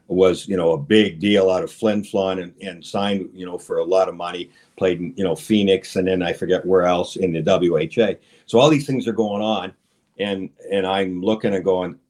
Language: English